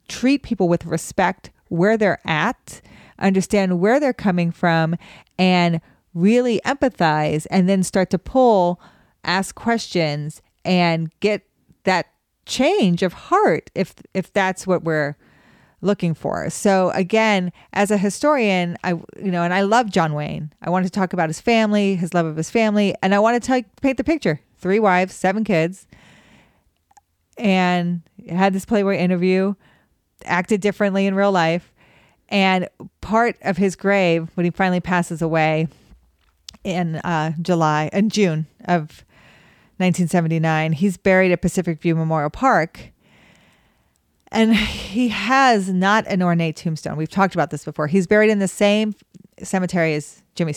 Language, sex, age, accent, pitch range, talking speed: English, female, 30-49, American, 165-205 Hz, 150 wpm